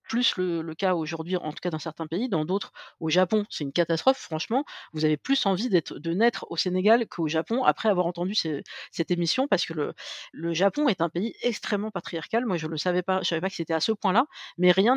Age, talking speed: 50-69, 230 wpm